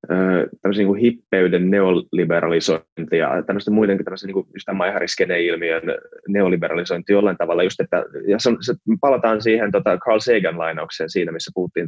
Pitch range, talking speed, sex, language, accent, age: 90-110 Hz, 135 wpm, male, Finnish, native, 20-39